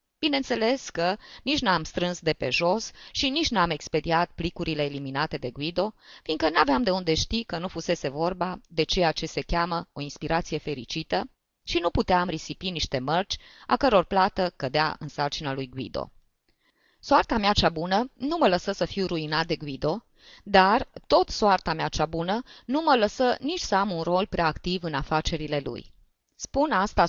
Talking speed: 175 wpm